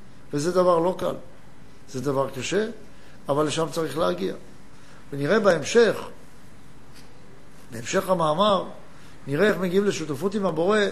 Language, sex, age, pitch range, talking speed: Hebrew, male, 60-79, 165-210 Hz, 115 wpm